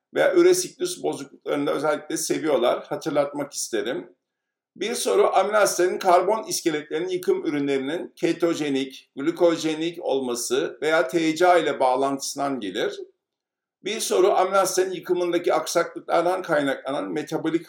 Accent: native